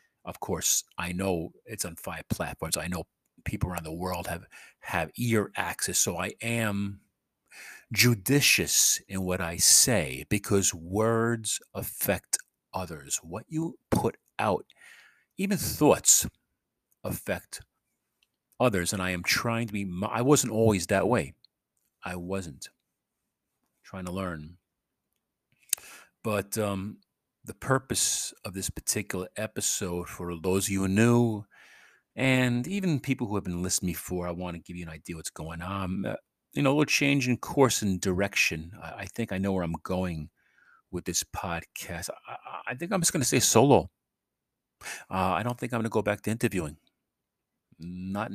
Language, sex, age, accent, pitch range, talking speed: English, male, 40-59, American, 90-120 Hz, 160 wpm